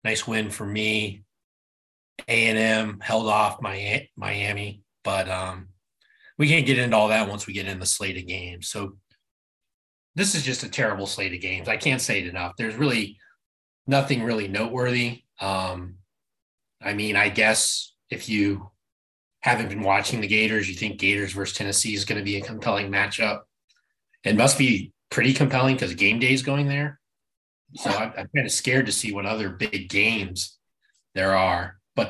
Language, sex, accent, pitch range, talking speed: English, male, American, 100-130 Hz, 180 wpm